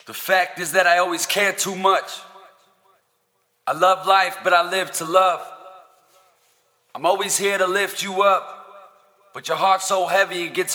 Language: English